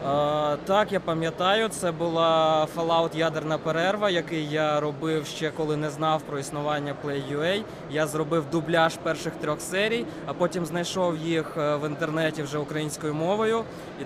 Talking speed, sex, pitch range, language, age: 150 wpm, male, 150-170 Hz, Ukrainian, 20-39